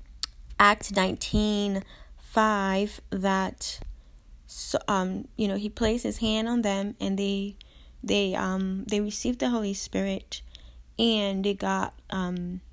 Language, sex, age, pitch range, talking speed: English, female, 20-39, 165-210 Hz, 125 wpm